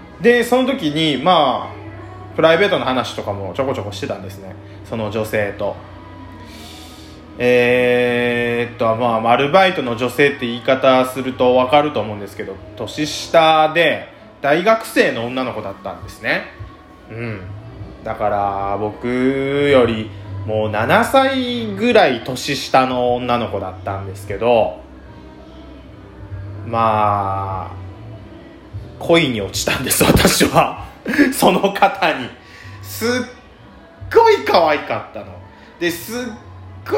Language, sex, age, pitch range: Japanese, male, 20-39, 105-165 Hz